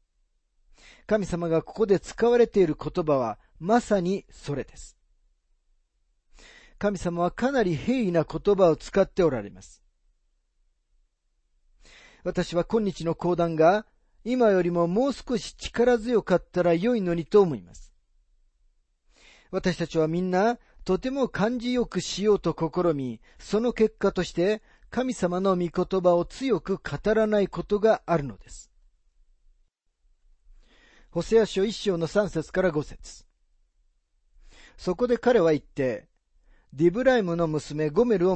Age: 40-59